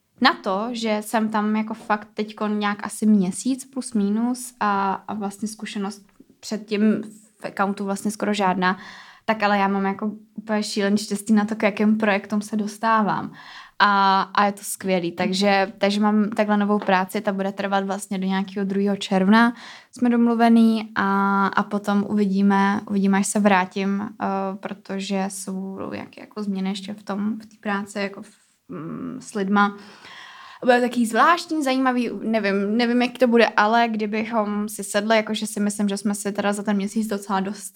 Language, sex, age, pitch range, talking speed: Czech, female, 20-39, 195-215 Hz, 170 wpm